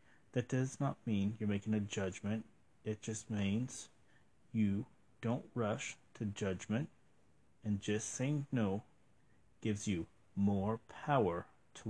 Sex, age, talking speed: male, 40-59, 125 wpm